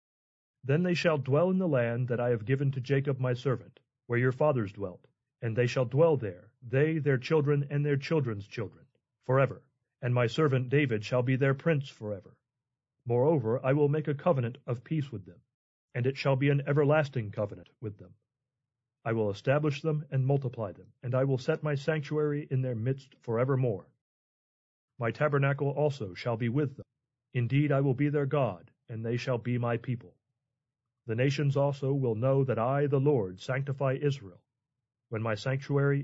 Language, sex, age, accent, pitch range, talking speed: English, male, 40-59, American, 120-145 Hz, 185 wpm